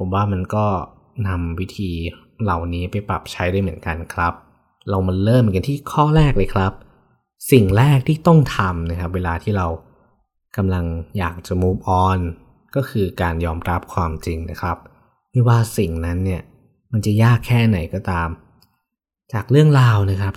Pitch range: 90-105 Hz